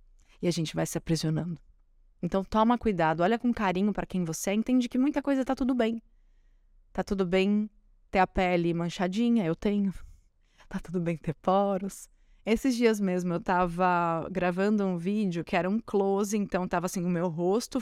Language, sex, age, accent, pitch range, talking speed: Portuguese, female, 20-39, Brazilian, 180-240 Hz, 185 wpm